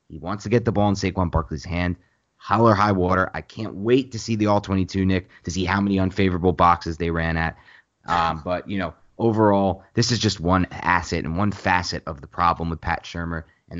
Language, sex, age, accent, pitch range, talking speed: English, male, 30-49, American, 85-100 Hz, 220 wpm